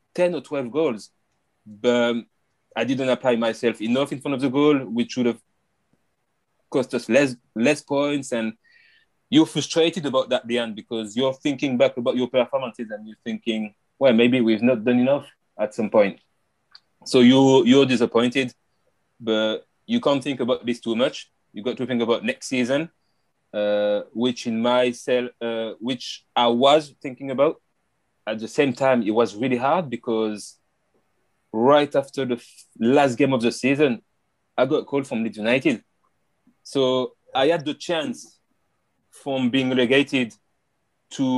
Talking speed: 160 wpm